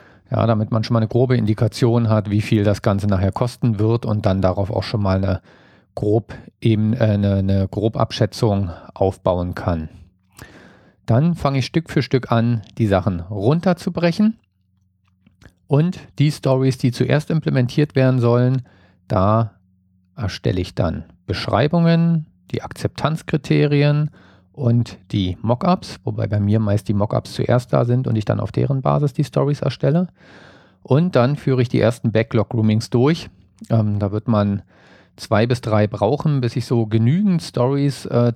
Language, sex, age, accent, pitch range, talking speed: German, male, 50-69, German, 100-130 Hz, 155 wpm